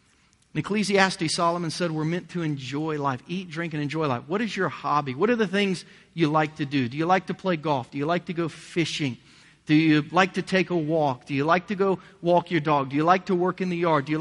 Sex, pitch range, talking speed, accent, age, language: male, 135-175 Hz, 265 wpm, American, 40-59, English